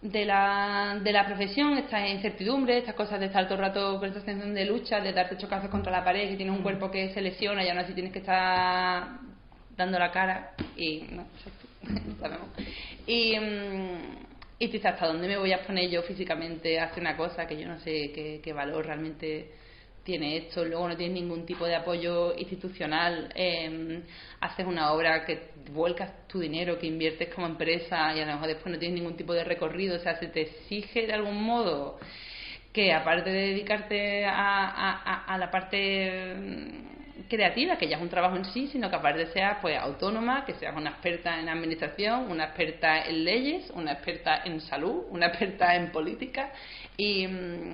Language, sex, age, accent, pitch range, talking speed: Spanish, female, 20-39, Spanish, 165-200 Hz, 185 wpm